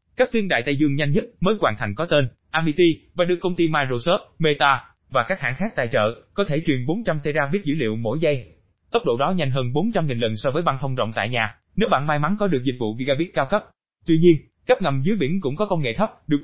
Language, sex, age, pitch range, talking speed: Vietnamese, male, 20-39, 125-175 Hz, 265 wpm